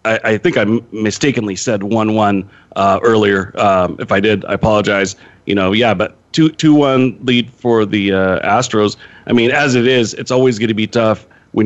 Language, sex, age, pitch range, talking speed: English, male, 40-59, 95-120 Hz, 200 wpm